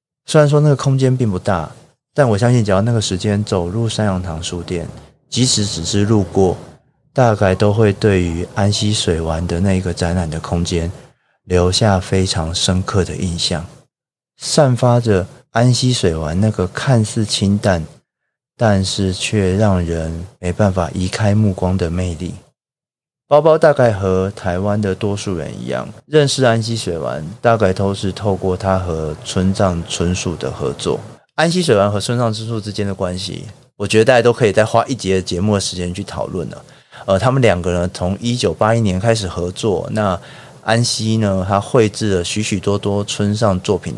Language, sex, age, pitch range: Chinese, male, 30-49, 90-115 Hz